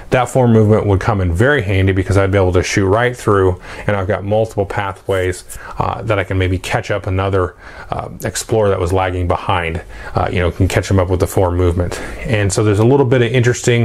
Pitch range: 95-115 Hz